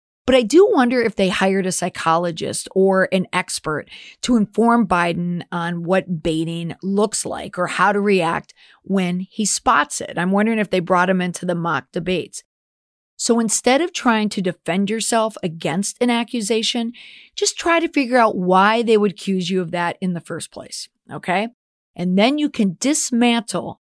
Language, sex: English, female